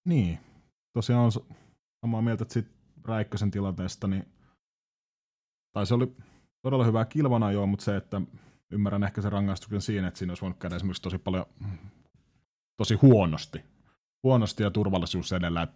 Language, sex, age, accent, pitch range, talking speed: Finnish, male, 30-49, native, 85-110 Hz, 140 wpm